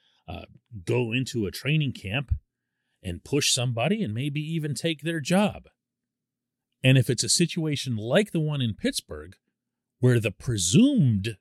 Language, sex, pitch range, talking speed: English, male, 105-160 Hz, 145 wpm